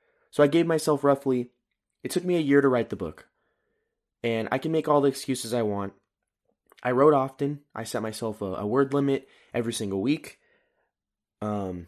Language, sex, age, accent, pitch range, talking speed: English, male, 20-39, American, 105-135 Hz, 185 wpm